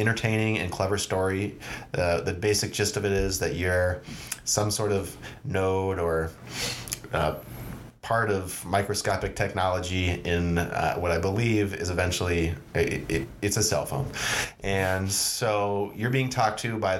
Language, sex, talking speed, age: English, male, 145 wpm, 30-49